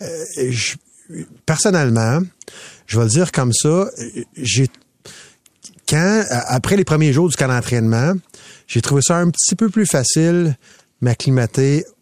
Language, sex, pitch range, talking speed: French, male, 120-150 Hz, 125 wpm